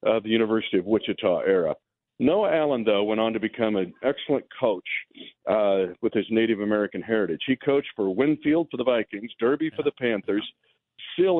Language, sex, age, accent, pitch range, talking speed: English, male, 50-69, American, 110-150 Hz, 180 wpm